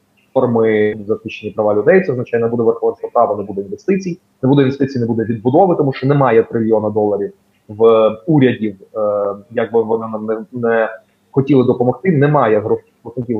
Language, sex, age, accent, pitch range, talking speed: Ukrainian, male, 30-49, native, 115-145 Hz, 170 wpm